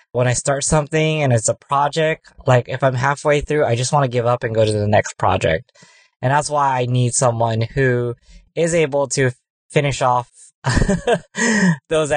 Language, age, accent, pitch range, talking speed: English, 20-39, American, 120-150 Hz, 185 wpm